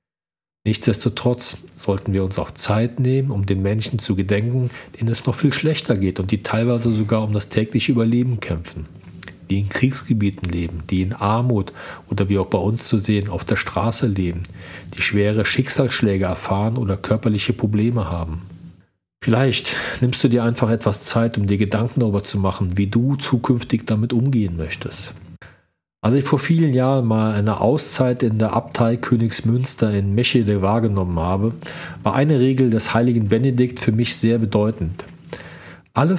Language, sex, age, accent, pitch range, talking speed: German, male, 40-59, German, 100-125 Hz, 165 wpm